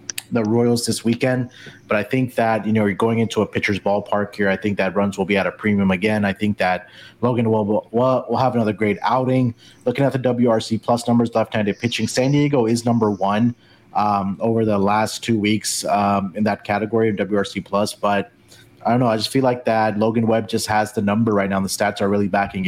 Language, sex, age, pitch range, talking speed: English, male, 30-49, 100-120 Hz, 230 wpm